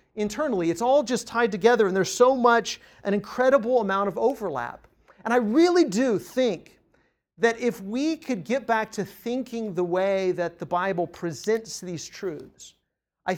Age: 40-59